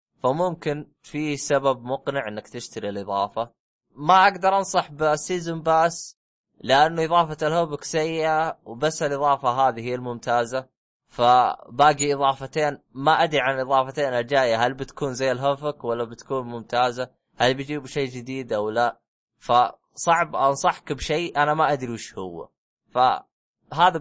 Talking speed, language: 125 wpm, Arabic